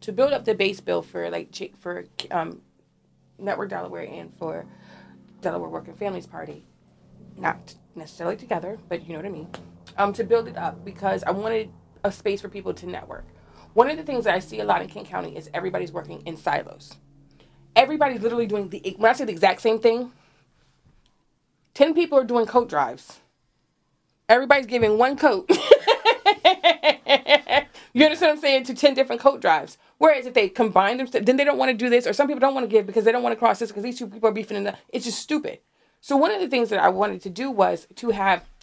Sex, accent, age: female, American, 30-49